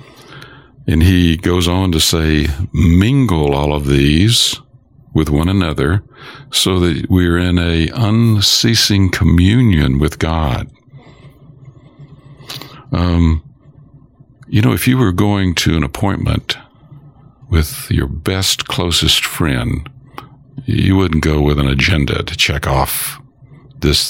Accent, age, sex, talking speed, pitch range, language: American, 60-79, male, 115 wpm, 80-130 Hz, English